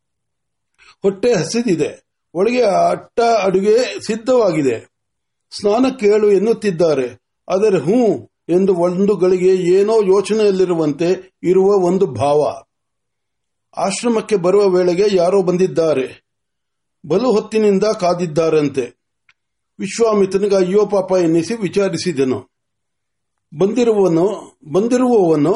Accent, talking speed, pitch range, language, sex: native, 35 wpm, 170-210 Hz, Marathi, male